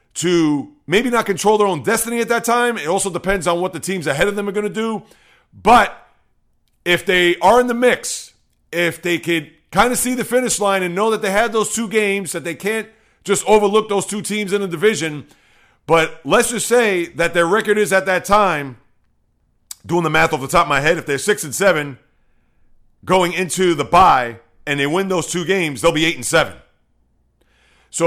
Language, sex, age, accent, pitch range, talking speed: English, male, 40-59, American, 160-210 Hz, 215 wpm